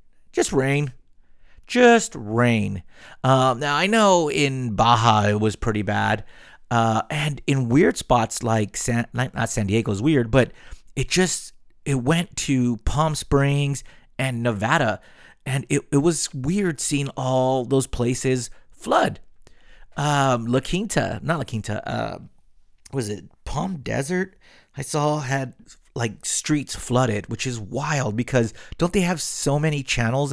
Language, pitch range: English, 105-140 Hz